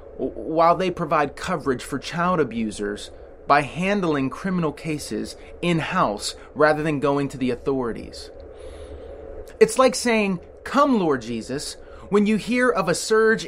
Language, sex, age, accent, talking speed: English, male, 30-49, American, 135 wpm